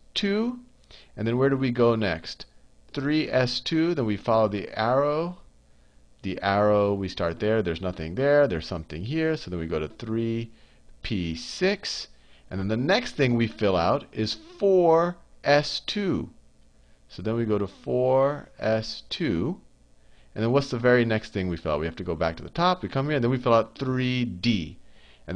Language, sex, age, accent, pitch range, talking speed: English, male, 40-59, American, 95-140 Hz, 175 wpm